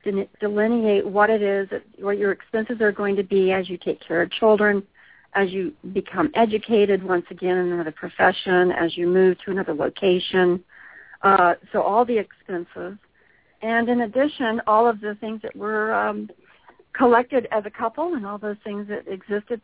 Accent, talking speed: American, 175 wpm